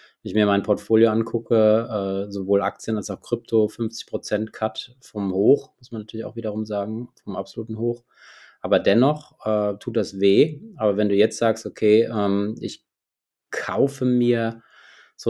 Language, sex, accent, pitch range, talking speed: German, male, German, 100-115 Hz, 160 wpm